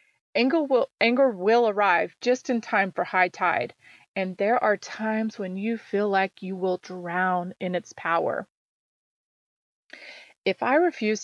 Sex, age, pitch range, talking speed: female, 30-49, 185-225 Hz, 150 wpm